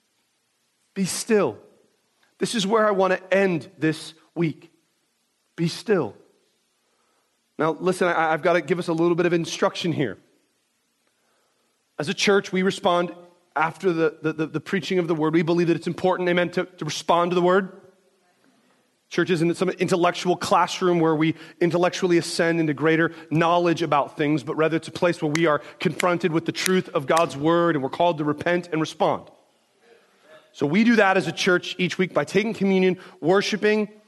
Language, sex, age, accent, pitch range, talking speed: English, male, 30-49, American, 155-185 Hz, 175 wpm